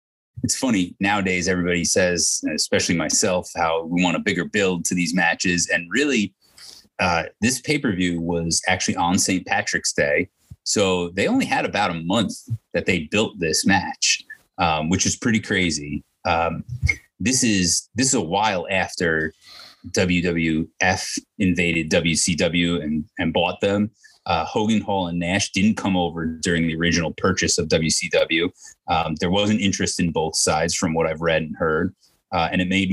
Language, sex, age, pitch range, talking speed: English, male, 30-49, 85-100 Hz, 170 wpm